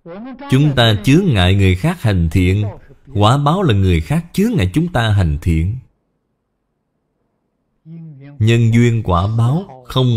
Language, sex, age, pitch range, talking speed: Vietnamese, male, 20-39, 95-140 Hz, 140 wpm